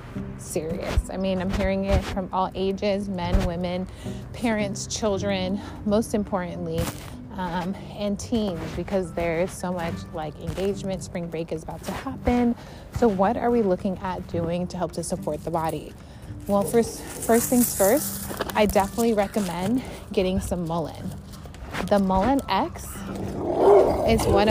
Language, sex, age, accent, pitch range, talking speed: English, female, 30-49, American, 180-225 Hz, 145 wpm